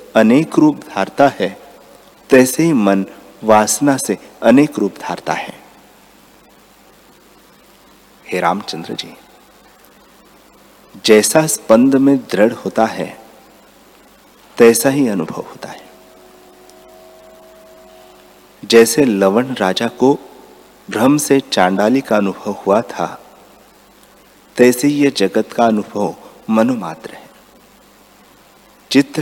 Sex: male